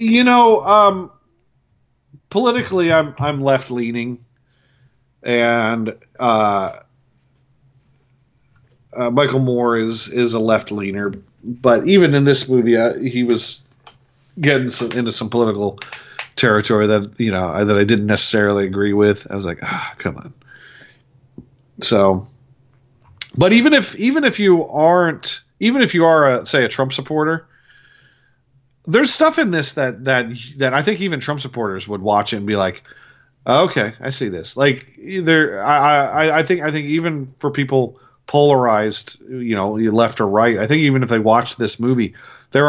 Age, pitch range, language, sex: 40-59, 110-145 Hz, English, male